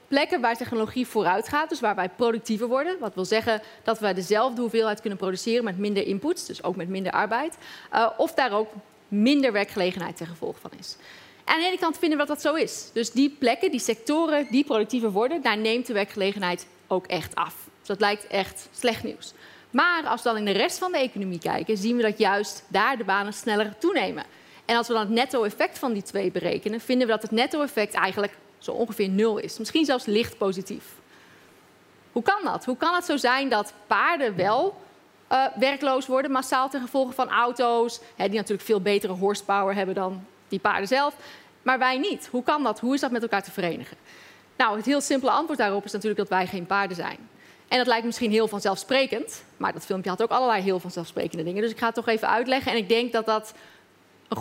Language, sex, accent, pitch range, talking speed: Dutch, female, Dutch, 200-260 Hz, 220 wpm